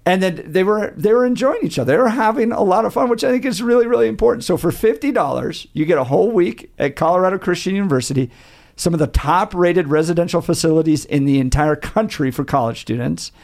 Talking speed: 215 wpm